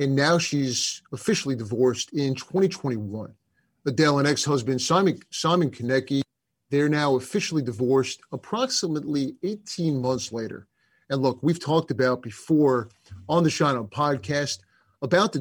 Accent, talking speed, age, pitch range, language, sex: American, 130 wpm, 30-49, 130-155 Hz, English, male